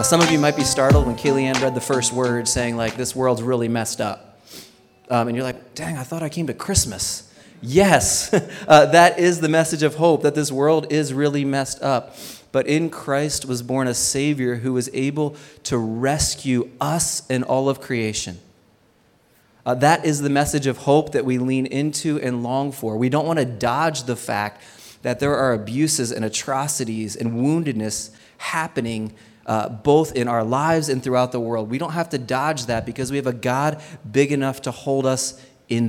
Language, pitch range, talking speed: English, 120-145 Hz, 195 wpm